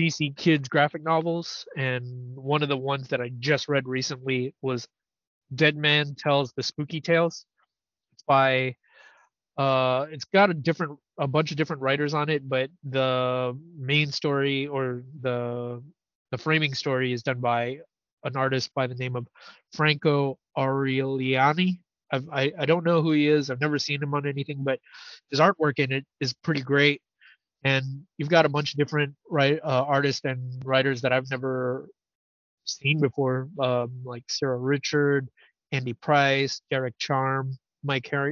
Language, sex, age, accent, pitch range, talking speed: English, male, 20-39, American, 130-150 Hz, 160 wpm